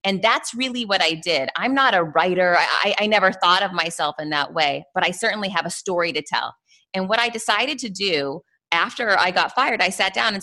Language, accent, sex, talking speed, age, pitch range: English, American, female, 235 wpm, 30-49, 160-205 Hz